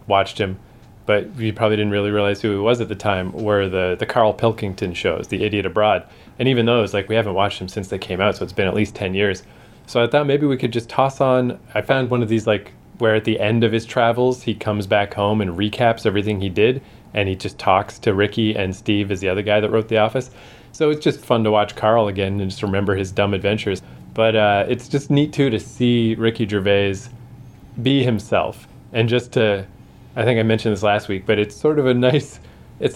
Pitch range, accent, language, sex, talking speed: 100-120 Hz, American, English, male, 240 wpm